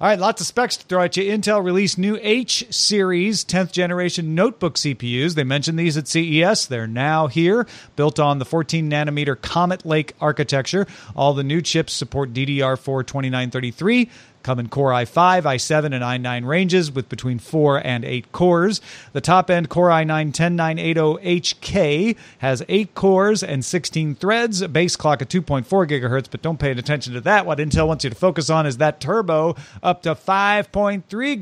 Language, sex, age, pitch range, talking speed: English, male, 40-59, 135-185 Hz, 165 wpm